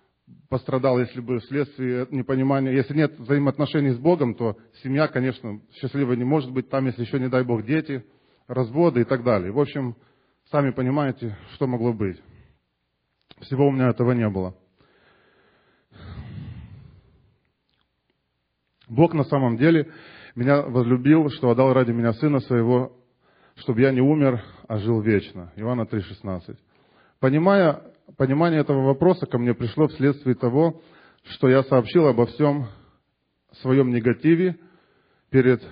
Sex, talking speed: male, 135 wpm